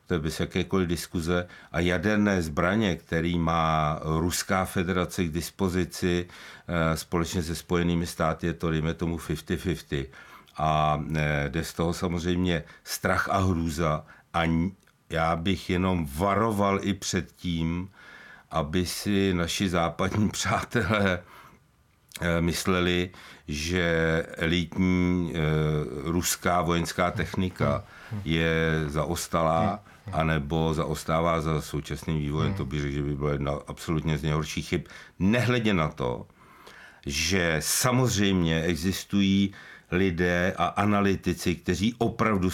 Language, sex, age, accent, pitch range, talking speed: Czech, male, 60-79, native, 80-90 Hz, 110 wpm